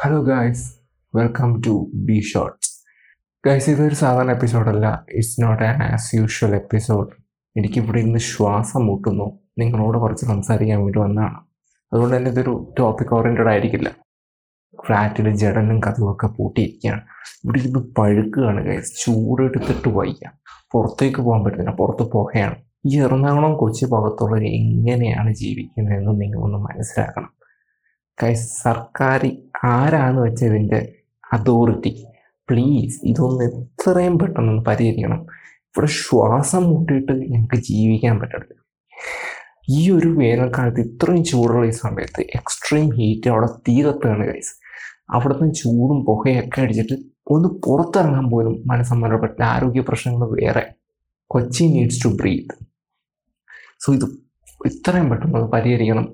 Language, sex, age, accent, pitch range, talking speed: Malayalam, male, 20-39, native, 110-130 Hz, 110 wpm